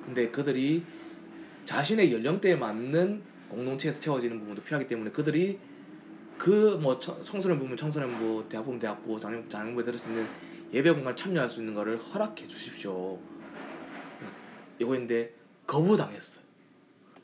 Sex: male